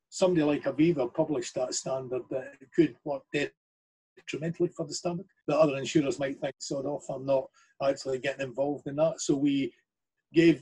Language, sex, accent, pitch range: English, male, British, 135-185 Hz